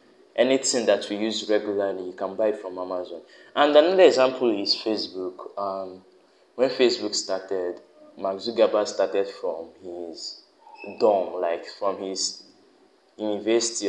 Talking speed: 125 wpm